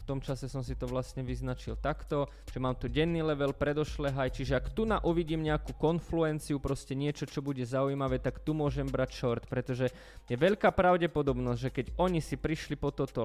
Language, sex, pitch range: Slovak, male, 130-150 Hz